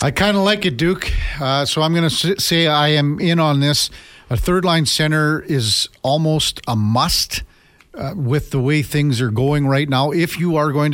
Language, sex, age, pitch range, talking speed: English, male, 50-69, 125-155 Hz, 205 wpm